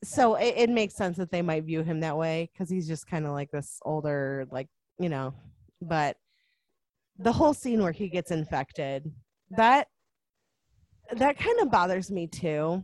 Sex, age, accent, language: female, 20-39, American, English